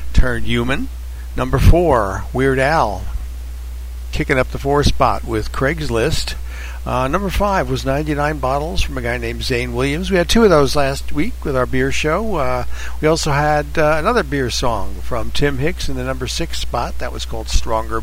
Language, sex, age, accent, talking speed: English, male, 60-79, American, 185 wpm